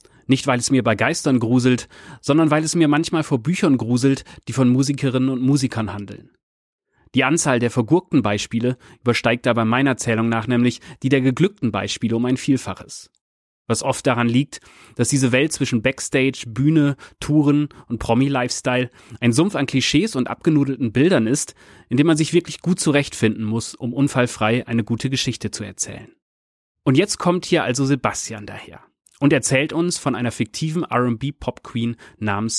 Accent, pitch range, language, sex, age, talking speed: German, 115-145 Hz, German, male, 30-49, 170 wpm